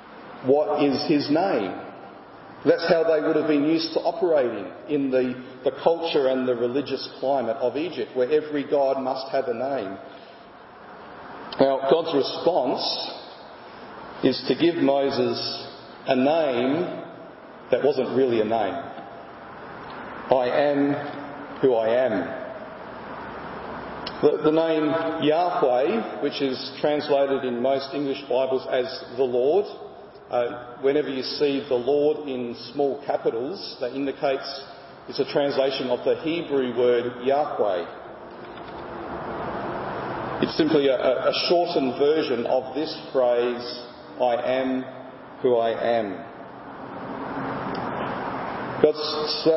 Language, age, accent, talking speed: English, 40-59, Australian, 115 wpm